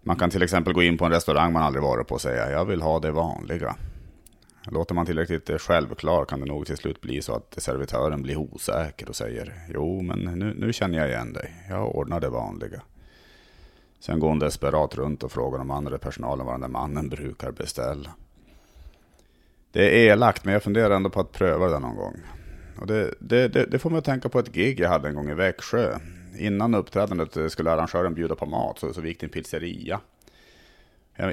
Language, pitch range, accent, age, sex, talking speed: Swedish, 75-95 Hz, Norwegian, 30-49, male, 205 wpm